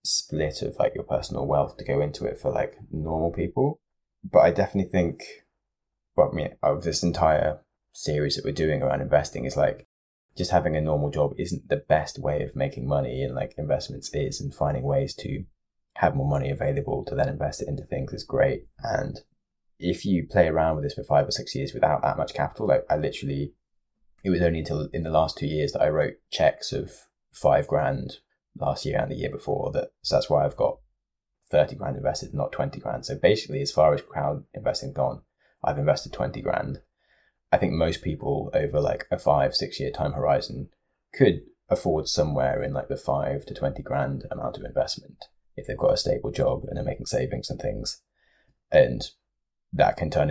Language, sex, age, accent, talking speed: English, male, 20-39, British, 205 wpm